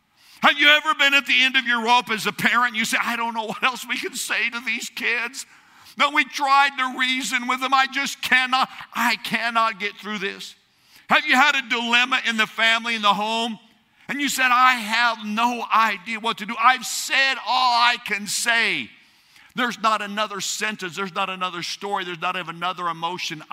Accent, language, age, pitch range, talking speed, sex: American, English, 50-69, 180-255 Hz, 205 wpm, male